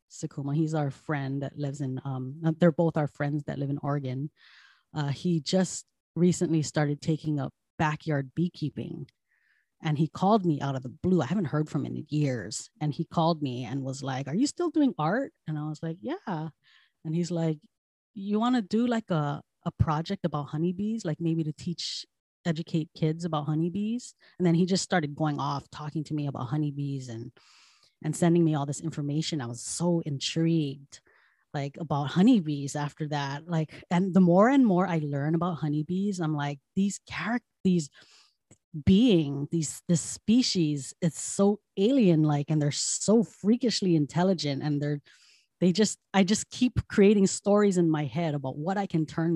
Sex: female